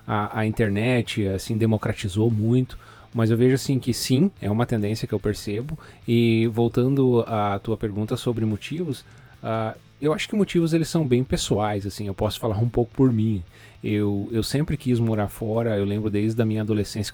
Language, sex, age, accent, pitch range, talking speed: Portuguese, male, 30-49, Brazilian, 105-120 Hz, 185 wpm